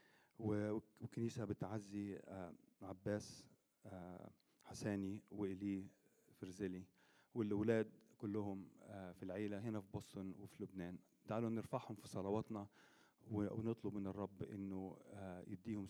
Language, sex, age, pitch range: Arabic, male, 40-59, 95-115 Hz